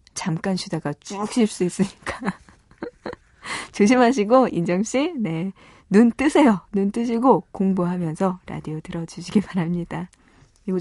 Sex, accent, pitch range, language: female, native, 165-220 Hz, Korean